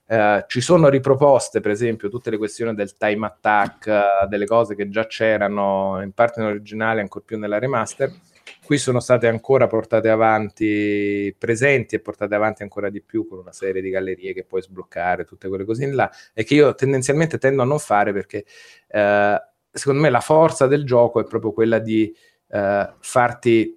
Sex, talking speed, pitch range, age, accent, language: male, 185 wpm, 105-125 Hz, 30-49, native, Italian